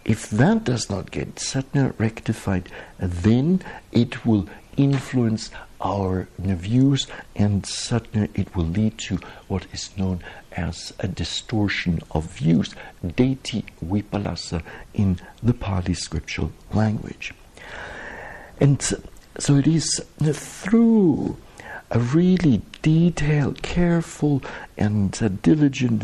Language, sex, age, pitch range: English, male, 60-79, 95-130 Hz